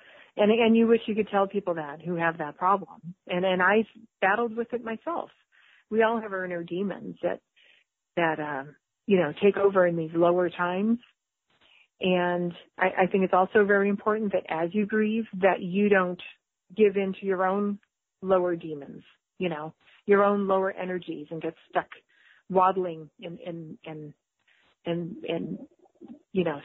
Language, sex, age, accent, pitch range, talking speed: English, female, 40-59, American, 175-215 Hz, 170 wpm